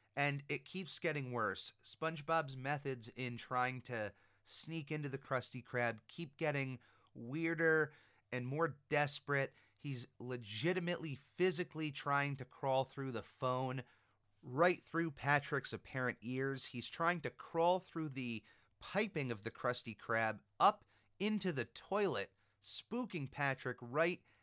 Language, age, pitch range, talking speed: English, 30-49, 115-145 Hz, 130 wpm